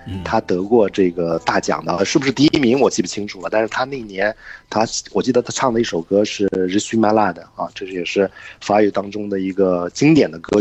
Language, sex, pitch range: Chinese, male, 90-115 Hz